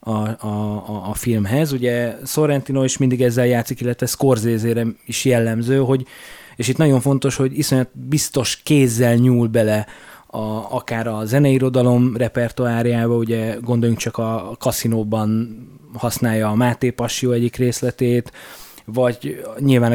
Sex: male